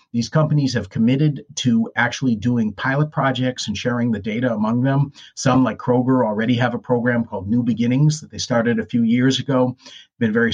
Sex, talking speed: male, 195 wpm